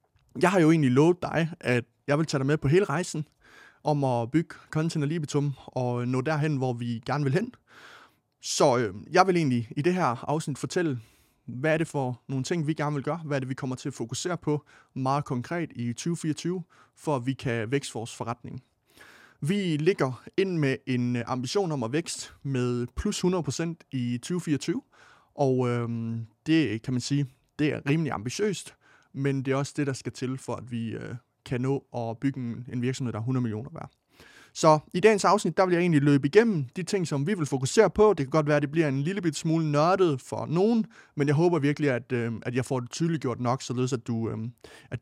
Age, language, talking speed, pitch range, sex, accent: 30-49, Danish, 215 wpm, 125-160 Hz, male, native